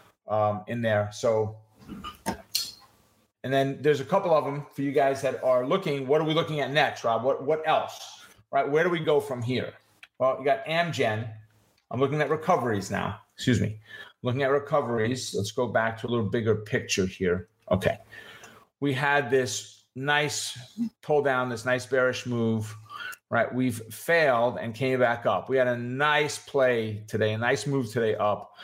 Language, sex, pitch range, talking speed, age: English, male, 115-145 Hz, 180 wpm, 40-59